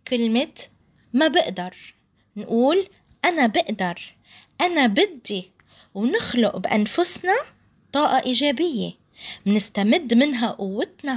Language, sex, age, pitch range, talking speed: Arabic, female, 20-39, 210-290 Hz, 75 wpm